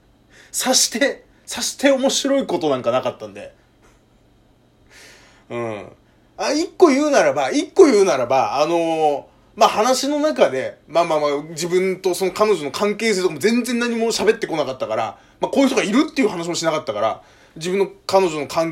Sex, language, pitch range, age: male, Japanese, 175-290 Hz, 20-39